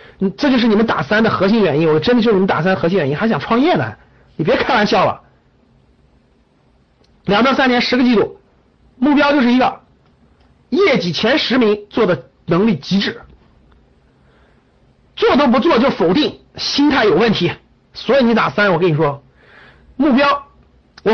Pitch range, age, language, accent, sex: 210-305 Hz, 50-69, Chinese, native, male